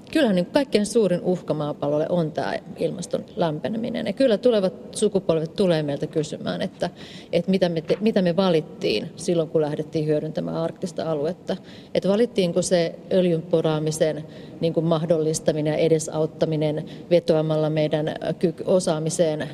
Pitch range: 160-195 Hz